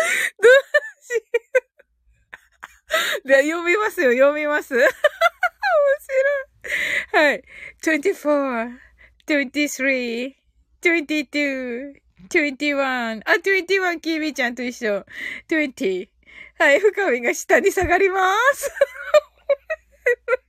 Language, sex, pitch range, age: Japanese, female, 275-370 Hz, 20-39